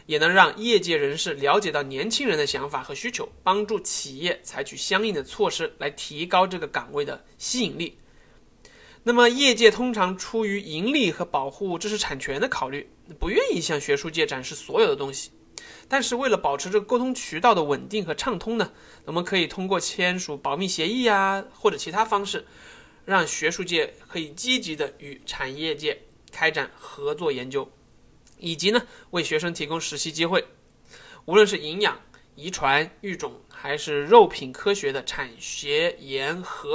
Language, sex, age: Chinese, male, 20-39